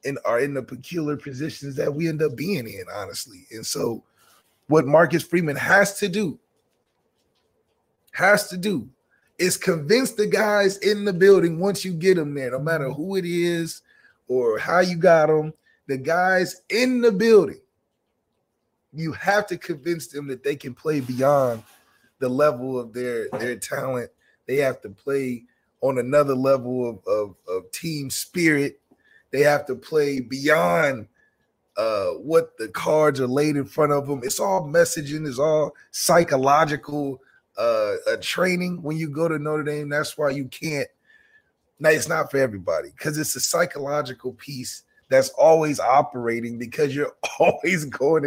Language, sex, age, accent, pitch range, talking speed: English, male, 30-49, American, 135-175 Hz, 160 wpm